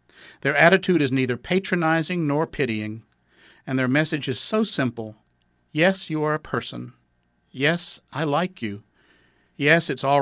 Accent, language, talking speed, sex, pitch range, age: American, English, 145 wpm, male, 110-150 Hz, 50-69